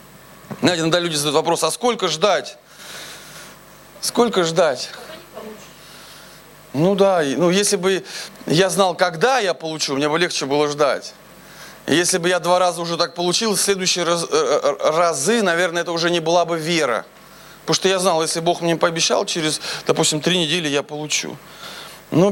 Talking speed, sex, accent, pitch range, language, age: 160 wpm, male, native, 170-220 Hz, Russian, 20-39